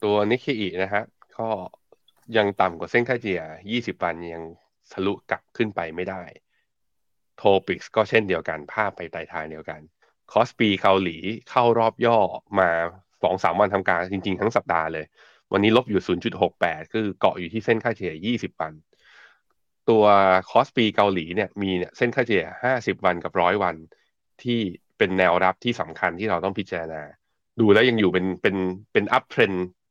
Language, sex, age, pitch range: Thai, male, 20-39, 90-110 Hz